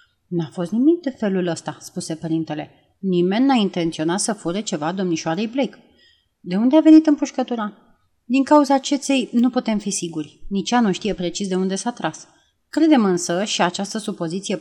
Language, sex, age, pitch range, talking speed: Romanian, female, 30-49, 170-225 Hz, 175 wpm